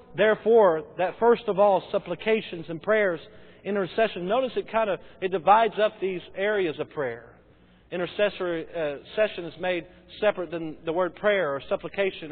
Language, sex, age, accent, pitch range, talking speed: English, male, 40-59, American, 165-210 Hz, 155 wpm